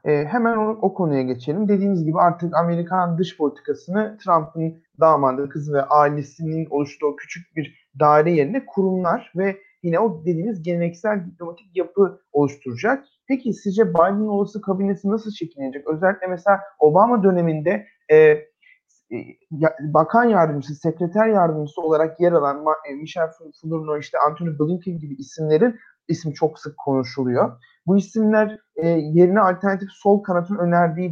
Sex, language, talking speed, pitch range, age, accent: male, Turkish, 135 wpm, 155-195 Hz, 30-49, native